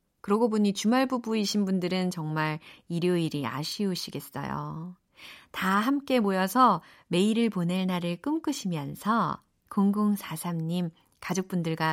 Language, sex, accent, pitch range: Korean, female, native, 175-255 Hz